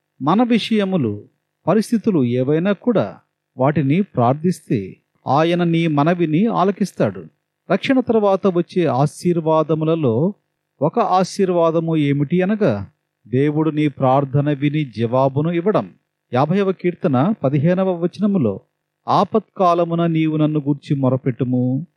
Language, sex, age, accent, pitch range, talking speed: Telugu, male, 40-59, native, 145-195 Hz, 95 wpm